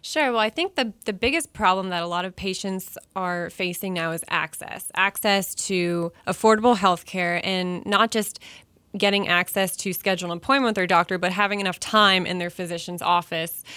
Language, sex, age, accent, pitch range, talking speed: English, female, 20-39, American, 180-210 Hz, 185 wpm